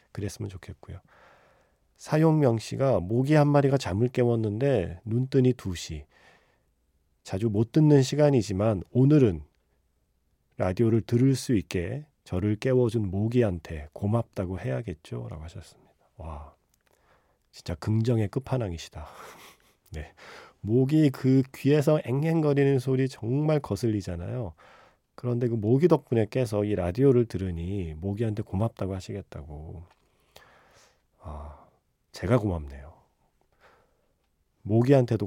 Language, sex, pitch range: Korean, male, 90-125 Hz